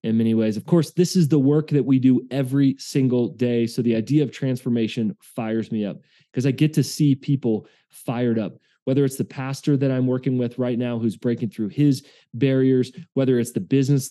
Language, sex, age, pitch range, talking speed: English, male, 20-39, 115-145 Hz, 215 wpm